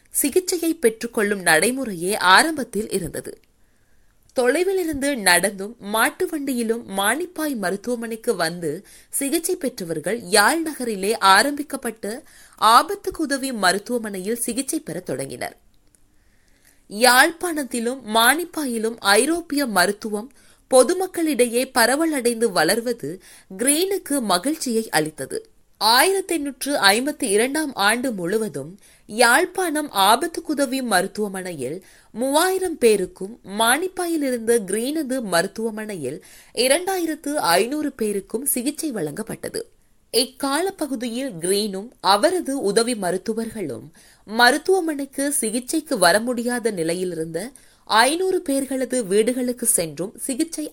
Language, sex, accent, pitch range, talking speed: Tamil, female, native, 205-300 Hz, 75 wpm